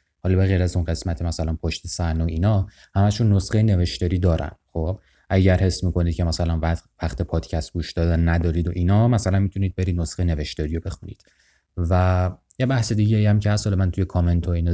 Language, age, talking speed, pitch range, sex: Persian, 30-49, 190 wpm, 85-100 Hz, male